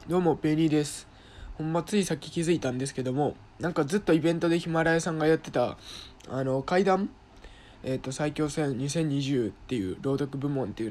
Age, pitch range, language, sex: 20-39, 115-155 Hz, Japanese, male